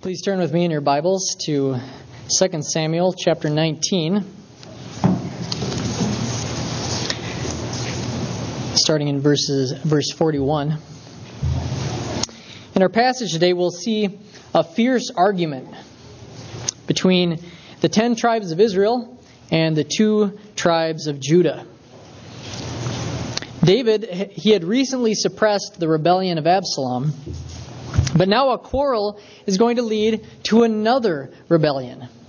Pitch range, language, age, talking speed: 135-200 Hz, English, 20-39, 110 wpm